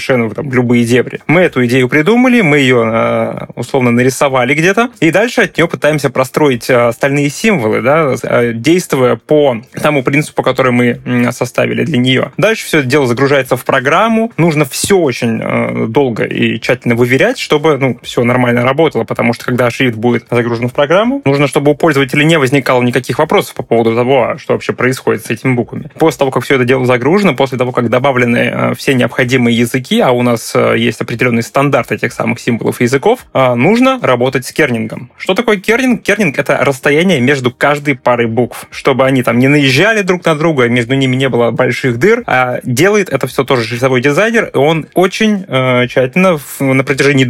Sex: male